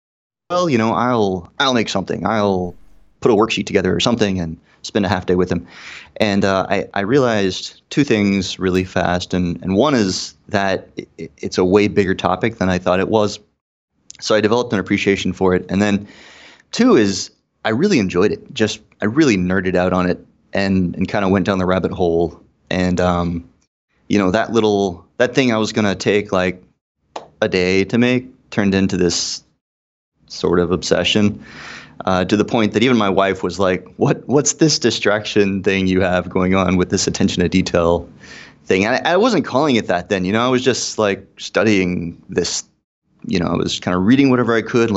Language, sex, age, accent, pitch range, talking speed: English, male, 30-49, American, 90-110 Hz, 200 wpm